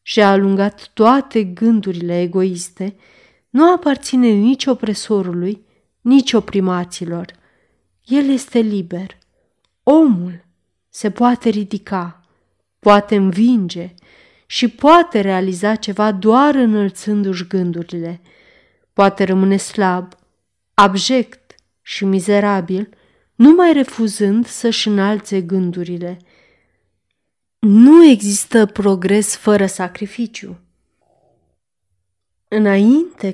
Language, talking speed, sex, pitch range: Romanian, 80 wpm, female, 190-230 Hz